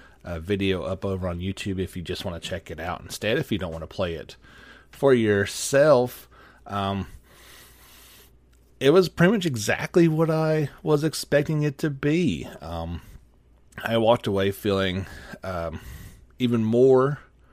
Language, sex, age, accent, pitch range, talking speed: English, male, 30-49, American, 95-120 Hz, 150 wpm